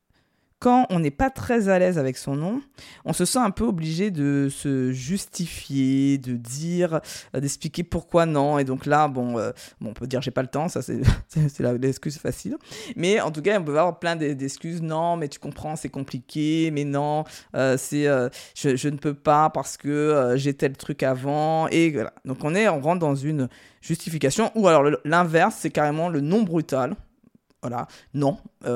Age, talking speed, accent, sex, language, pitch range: 20-39, 190 wpm, French, female, French, 135-170 Hz